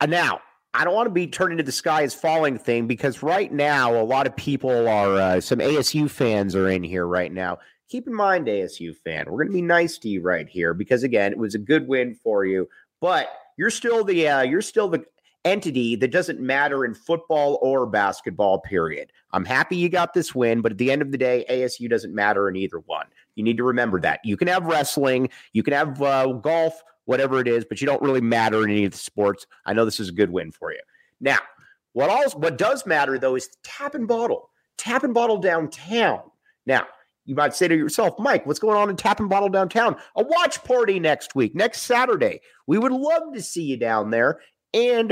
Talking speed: 230 wpm